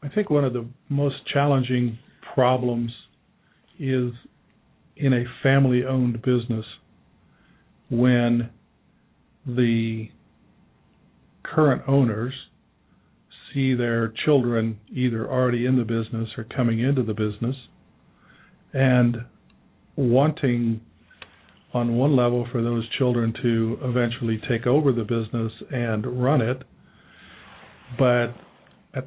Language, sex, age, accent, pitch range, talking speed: English, male, 50-69, American, 120-130 Hz, 100 wpm